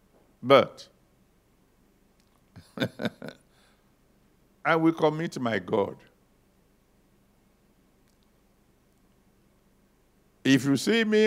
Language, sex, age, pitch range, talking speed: English, male, 60-79, 125-185 Hz, 55 wpm